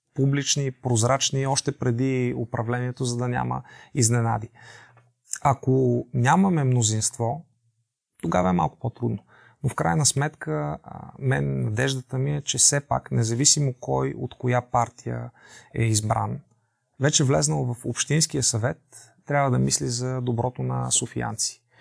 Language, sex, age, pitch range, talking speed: Bulgarian, male, 30-49, 115-135 Hz, 125 wpm